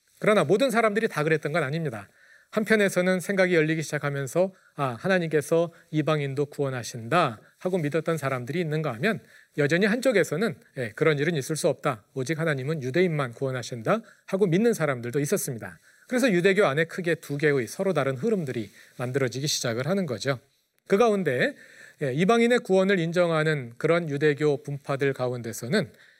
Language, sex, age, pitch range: Korean, male, 40-59, 135-185 Hz